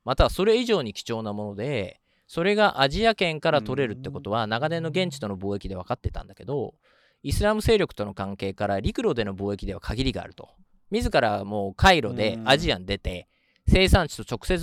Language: Japanese